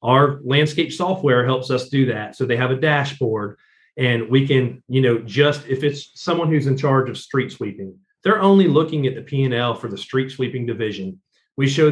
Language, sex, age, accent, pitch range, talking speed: English, male, 40-59, American, 130-175 Hz, 210 wpm